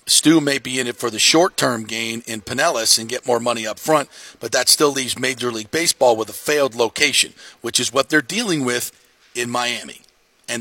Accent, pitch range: American, 115-130 Hz